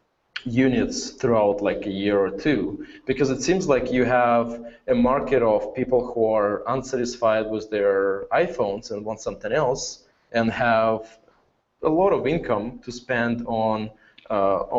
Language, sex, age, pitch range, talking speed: English, male, 20-39, 110-125 Hz, 150 wpm